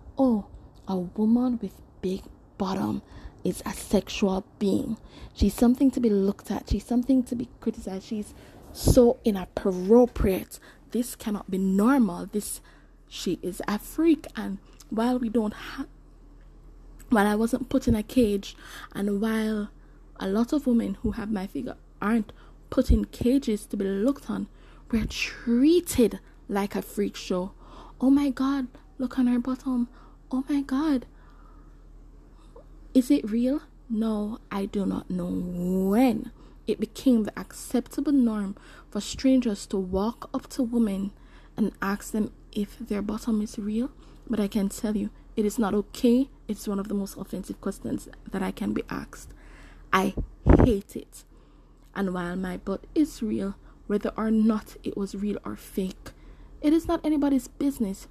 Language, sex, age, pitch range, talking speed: English, female, 20-39, 205-255 Hz, 155 wpm